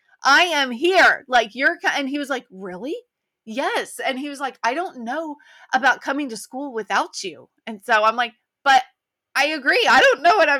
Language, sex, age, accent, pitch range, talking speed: English, female, 30-49, American, 220-295 Hz, 205 wpm